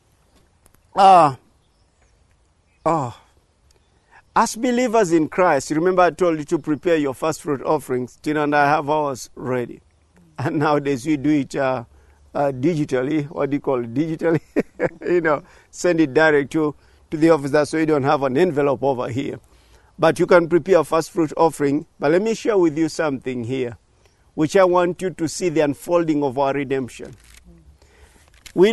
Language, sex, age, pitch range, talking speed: English, male, 50-69, 130-165 Hz, 175 wpm